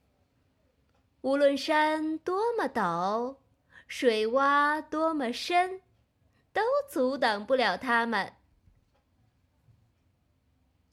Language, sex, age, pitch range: Chinese, female, 20-39, 220-295 Hz